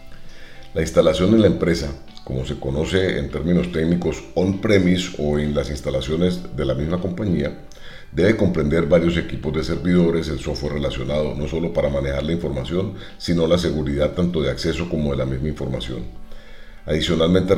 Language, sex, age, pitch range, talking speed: Spanish, male, 40-59, 70-90 Hz, 160 wpm